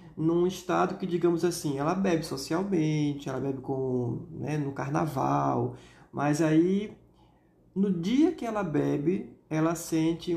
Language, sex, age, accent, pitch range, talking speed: Portuguese, male, 20-39, Brazilian, 145-175 Hz, 135 wpm